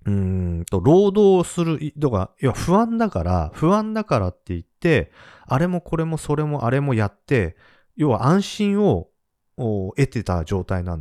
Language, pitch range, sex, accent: Japanese, 90-150 Hz, male, native